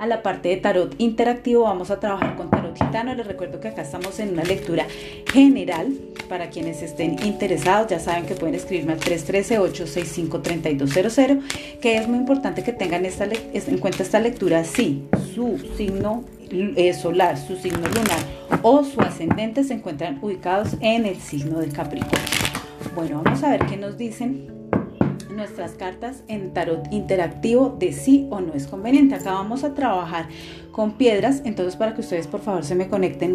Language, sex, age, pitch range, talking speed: Spanish, female, 30-49, 175-230 Hz, 170 wpm